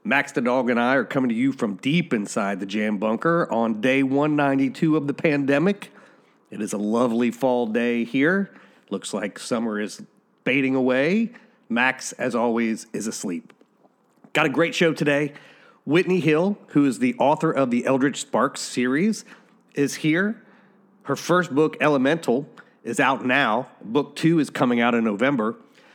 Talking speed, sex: 165 wpm, male